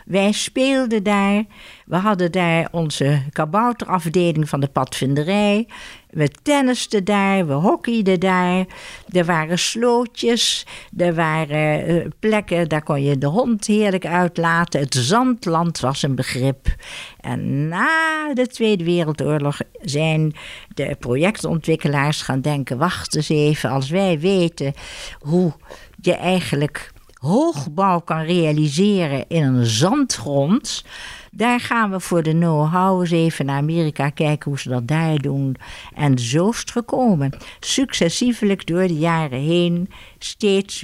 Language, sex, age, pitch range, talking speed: Dutch, female, 50-69, 150-200 Hz, 130 wpm